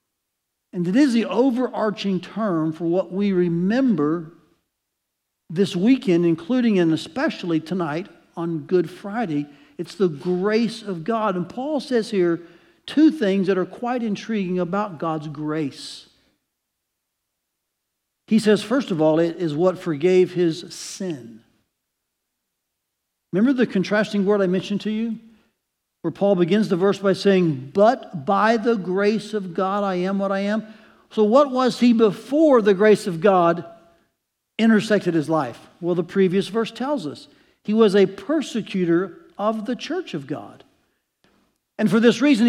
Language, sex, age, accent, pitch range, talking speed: English, male, 60-79, American, 175-225 Hz, 150 wpm